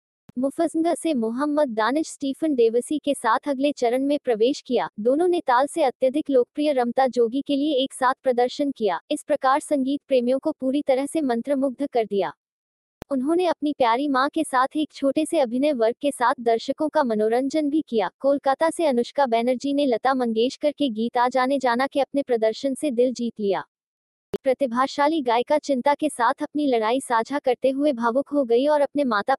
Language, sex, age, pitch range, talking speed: Hindi, female, 20-39, 245-290 Hz, 185 wpm